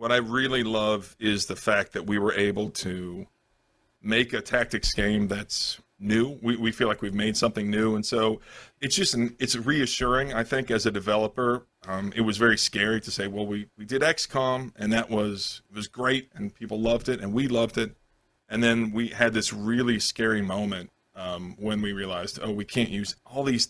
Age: 40-59